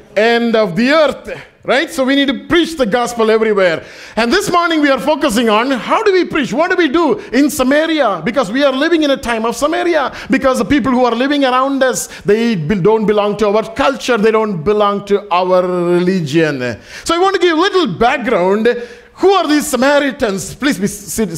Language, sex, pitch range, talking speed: English, male, 190-290 Hz, 205 wpm